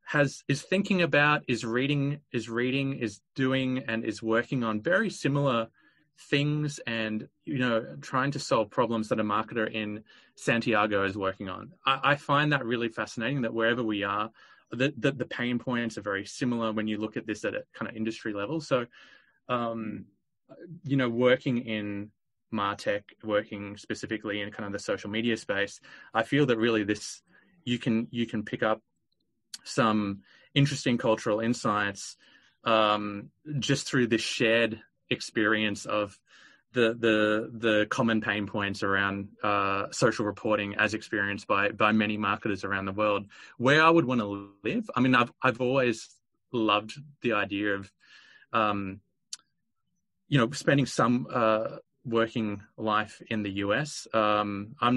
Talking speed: 160 wpm